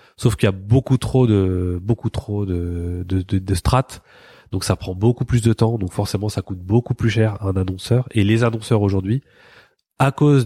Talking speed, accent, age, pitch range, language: 200 wpm, French, 30-49, 100-125 Hz, French